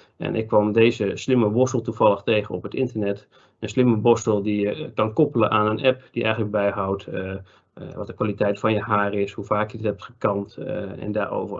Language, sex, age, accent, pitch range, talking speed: Dutch, male, 40-59, Dutch, 100-115 Hz, 215 wpm